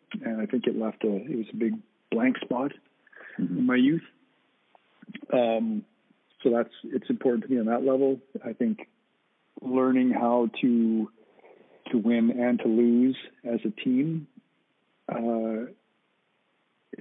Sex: male